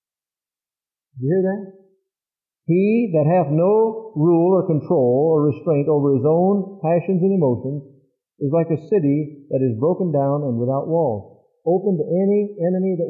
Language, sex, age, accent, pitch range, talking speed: English, male, 50-69, American, 130-180 Hz, 155 wpm